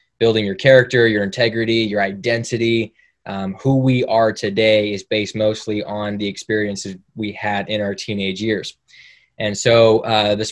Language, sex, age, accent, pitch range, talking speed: English, male, 20-39, American, 105-120 Hz, 160 wpm